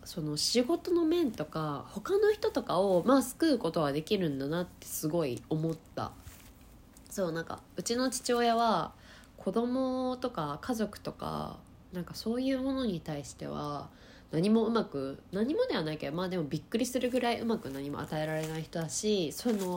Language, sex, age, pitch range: Japanese, female, 20-39, 160-255 Hz